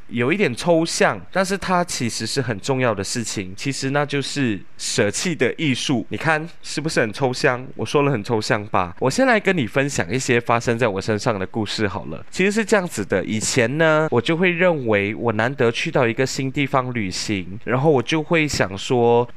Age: 20-39